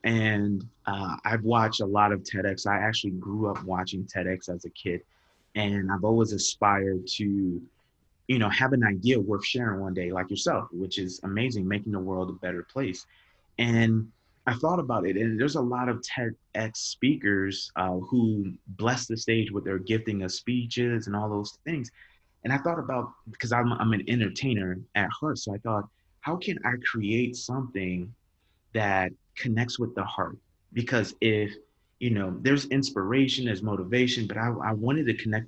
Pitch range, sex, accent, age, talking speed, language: 95-115 Hz, male, American, 30-49, 180 wpm, English